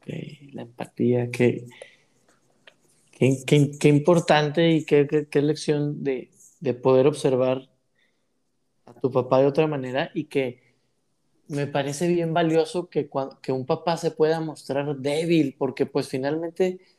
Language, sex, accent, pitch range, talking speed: Spanish, male, Mexican, 135-170 Hz, 140 wpm